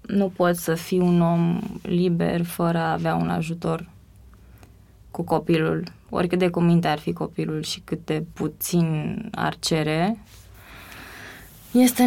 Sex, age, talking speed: female, 20-39, 140 wpm